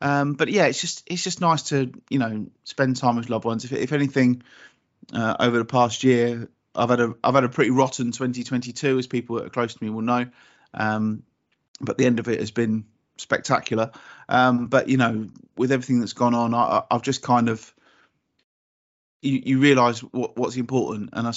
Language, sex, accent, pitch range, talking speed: English, male, British, 115-130 Hz, 205 wpm